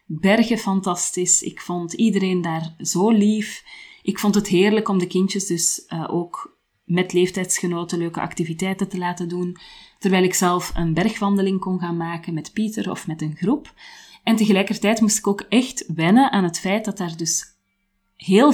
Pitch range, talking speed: 170-200 Hz, 170 wpm